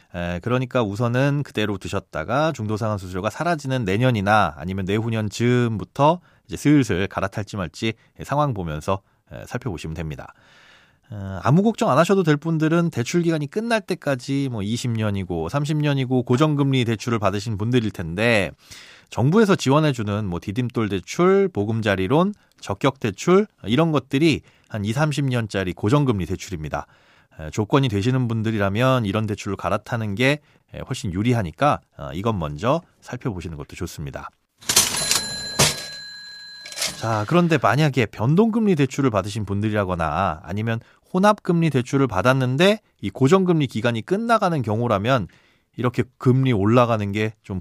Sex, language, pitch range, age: male, Korean, 100-145 Hz, 30-49